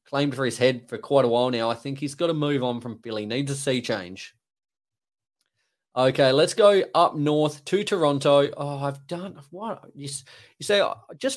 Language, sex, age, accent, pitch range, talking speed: English, male, 20-39, Australian, 120-150 Hz, 195 wpm